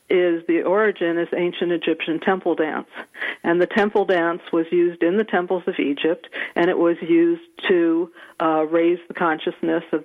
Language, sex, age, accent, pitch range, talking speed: English, female, 50-69, American, 165-185 Hz, 175 wpm